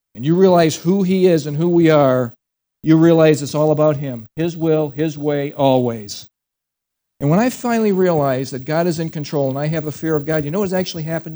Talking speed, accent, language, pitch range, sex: 225 wpm, American, English, 140-180 Hz, male